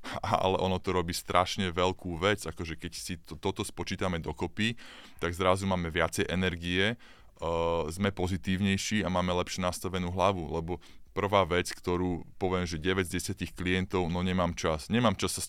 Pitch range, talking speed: 85-100 Hz, 170 wpm